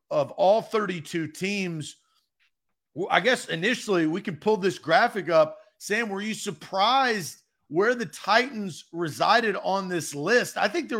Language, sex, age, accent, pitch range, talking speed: English, male, 40-59, American, 145-195 Hz, 145 wpm